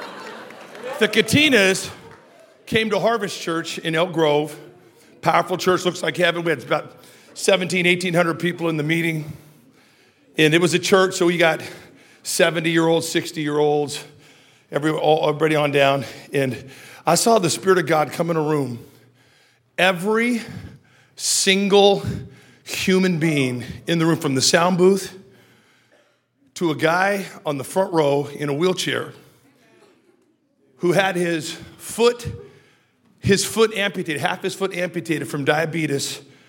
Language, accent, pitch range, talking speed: English, American, 150-190 Hz, 135 wpm